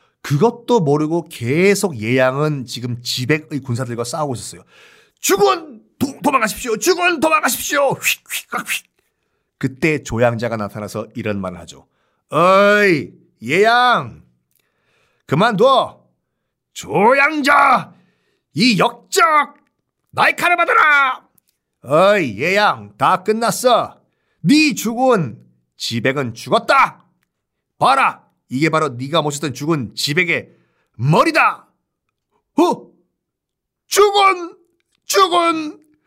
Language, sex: Korean, male